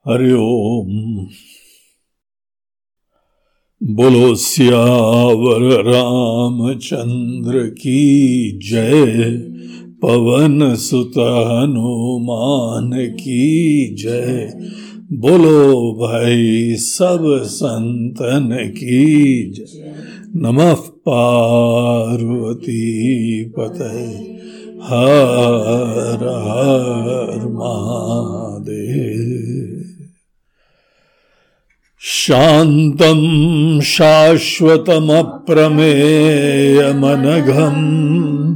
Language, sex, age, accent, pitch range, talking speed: Hindi, male, 60-79, native, 120-155 Hz, 35 wpm